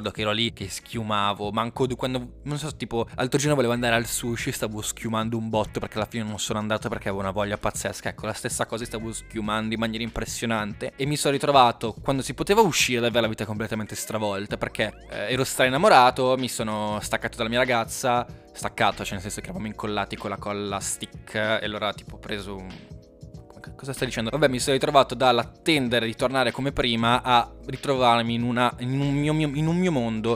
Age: 20-39